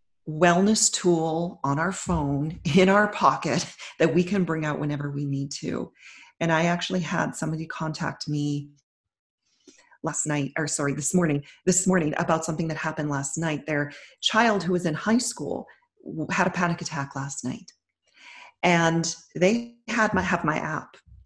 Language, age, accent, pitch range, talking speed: English, 40-59, American, 150-185 Hz, 165 wpm